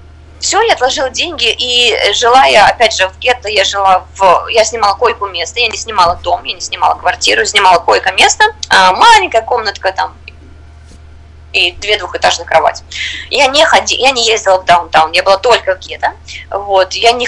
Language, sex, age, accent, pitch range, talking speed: Russian, female, 20-39, native, 155-250 Hz, 180 wpm